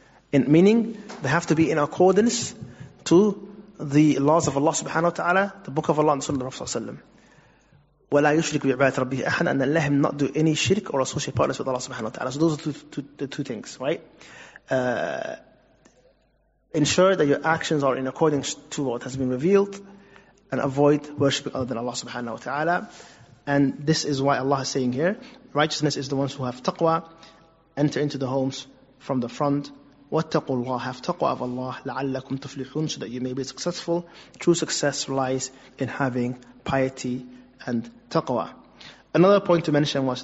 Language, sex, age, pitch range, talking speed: English, male, 30-49, 130-160 Hz, 170 wpm